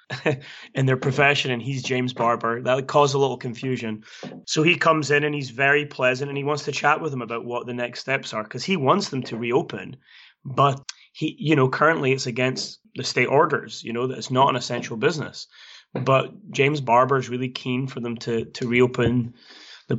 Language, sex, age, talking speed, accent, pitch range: English, male, 20-39, 210 wpm, British, 120-140 Hz